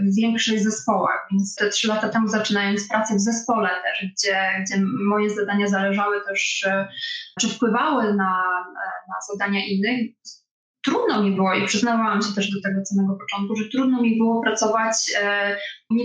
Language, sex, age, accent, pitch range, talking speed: Polish, female, 20-39, native, 205-235 Hz, 155 wpm